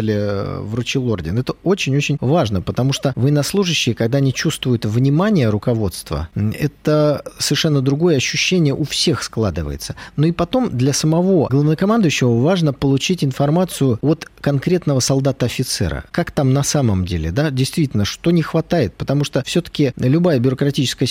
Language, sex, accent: Russian, male, native